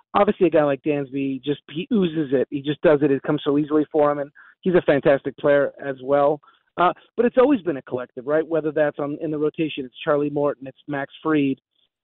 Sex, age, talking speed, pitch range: male, 40-59, 230 wpm, 145-175 Hz